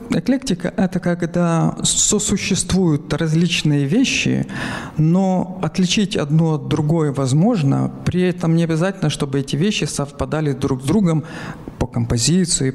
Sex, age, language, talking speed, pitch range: male, 50-69, Ukrainian, 120 wpm, 135-180 Hz